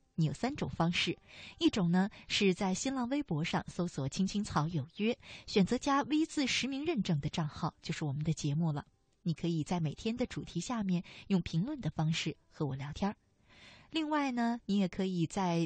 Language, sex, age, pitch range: Chinese, female, 20-39, 160-225 Hz